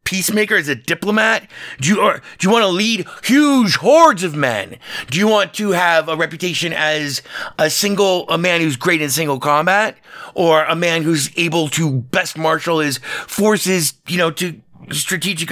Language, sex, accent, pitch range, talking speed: English, male, American, 125-175 Hz, 180 wpm